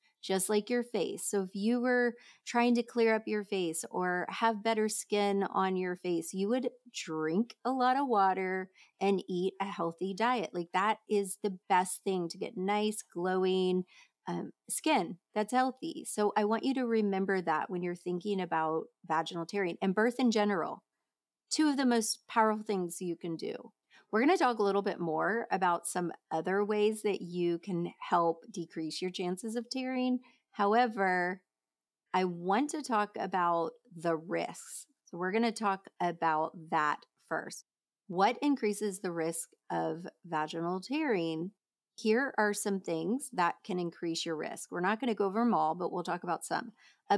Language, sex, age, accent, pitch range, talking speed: English, female, 30-49, American, 180-235 Hz, 180 wpm